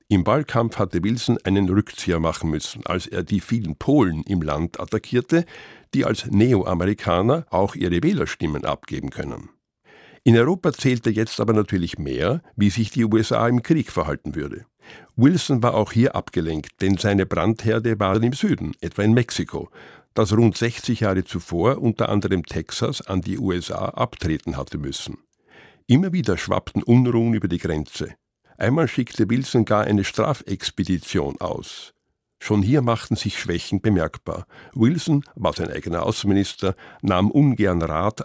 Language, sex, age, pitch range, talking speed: German, male, 50-69, 90-120 Hz, 150 wpm